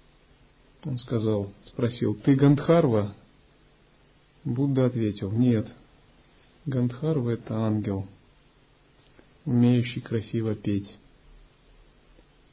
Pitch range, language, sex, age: 110-135 Hz, Russian, male, 40-59